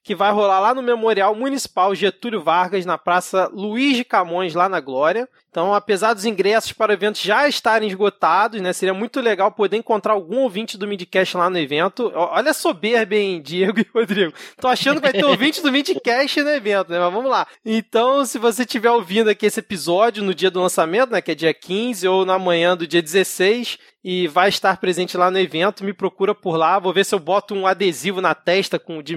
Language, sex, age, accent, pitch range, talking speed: Portuguese, male, 20-39, Brazilian, 185-245 Hz, 220 wpm